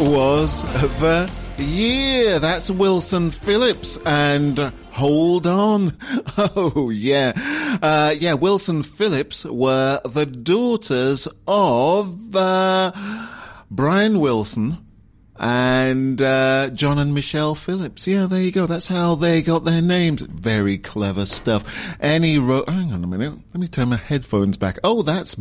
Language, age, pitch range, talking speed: English, 30-49, 125-185 Hz, 130 wpm